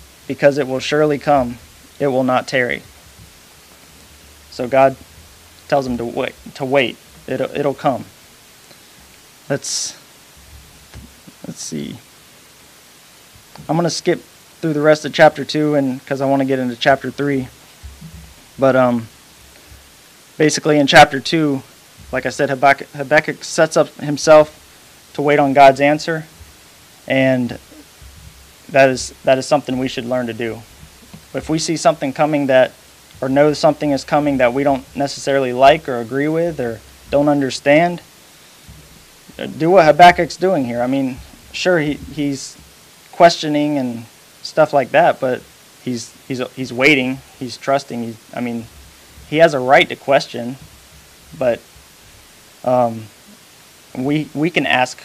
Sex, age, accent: male, 20-39, American